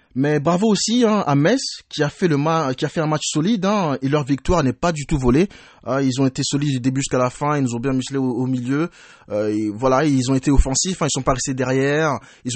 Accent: French